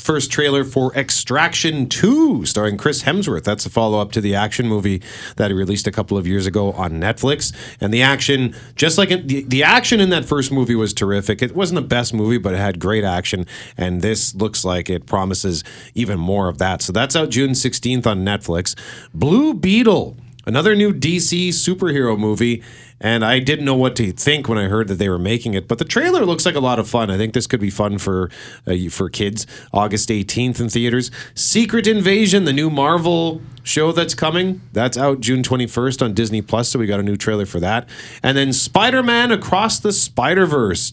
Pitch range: 105-140 Hz